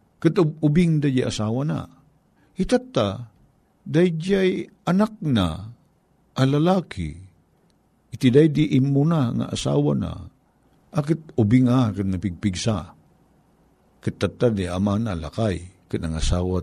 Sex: male